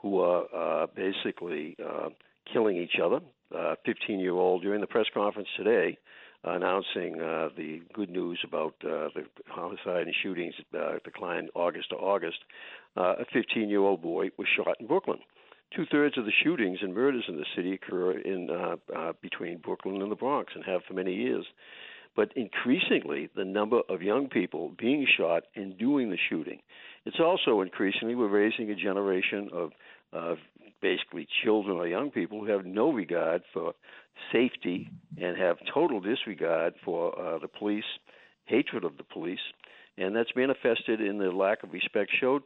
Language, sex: English, male